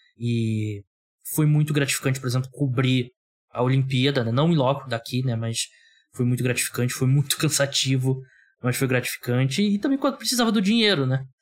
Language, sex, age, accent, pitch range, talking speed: Portuguese, male, 20-39, Brazilian, 125-155 Hz, 170 wpm